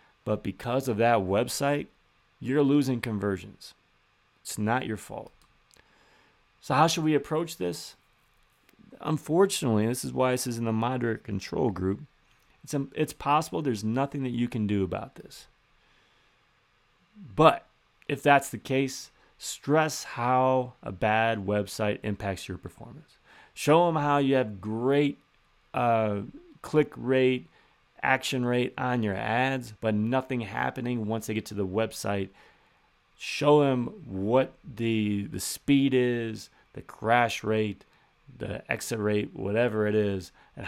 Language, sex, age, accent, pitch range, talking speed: English, male, 30-49, American, 105-140 Hz, 135 wpm